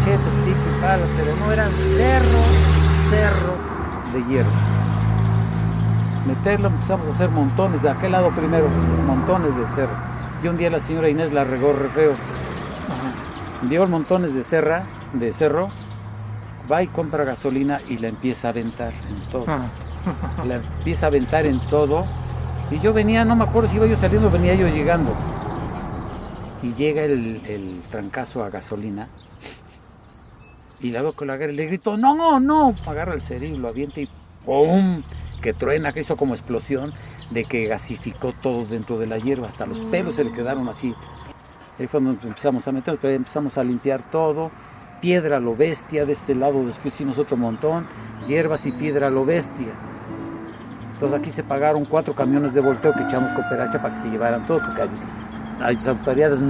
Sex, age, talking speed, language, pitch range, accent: male, 50-69, 165 wpm, Spanish, 110-145 Hz, Mexican